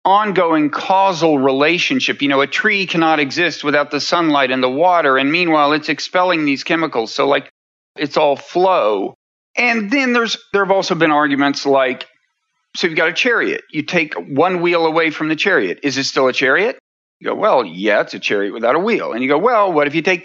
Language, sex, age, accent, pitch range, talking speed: English, male, 40-59, American, 145-200 Hz, 210 wpm